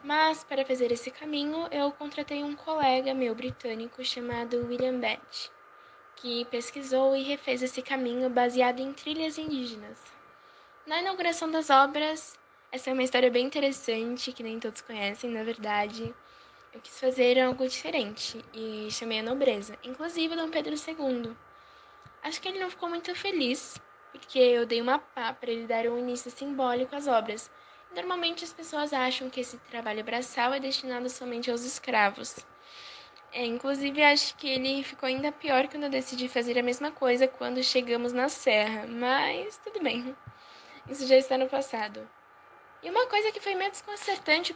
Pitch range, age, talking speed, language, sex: 245-300 Hz, 10-29, 160 wpm, Portuguese, female